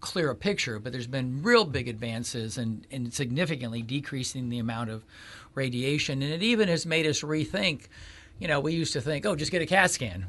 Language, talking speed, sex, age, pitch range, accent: English, 205 wpm, male, 50-69, 120-160 Hz, American